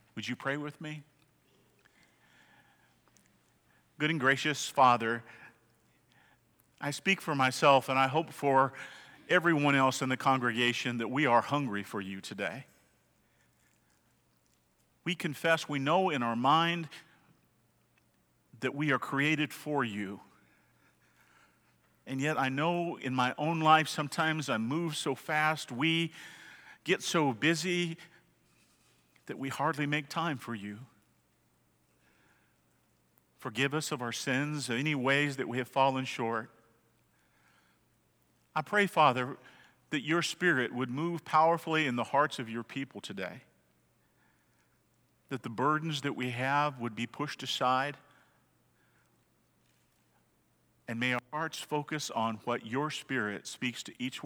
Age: 50-69